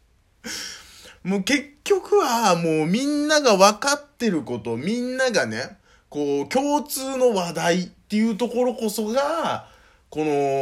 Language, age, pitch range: Japanese, 20-39, 160-240 Hz